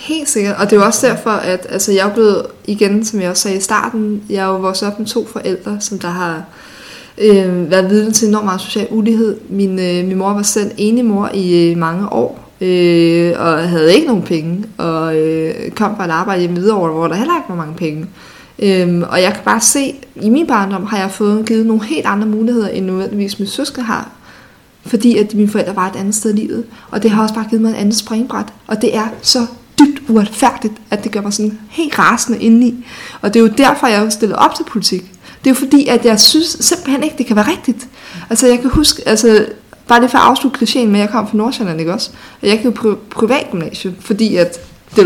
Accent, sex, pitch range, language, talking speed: native, female, 195-235 Hz, Danish, 235 wpm